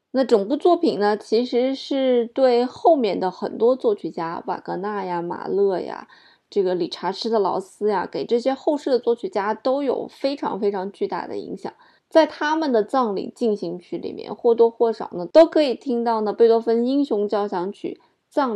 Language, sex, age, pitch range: Chinese, female, 20-39, 190-250 Hz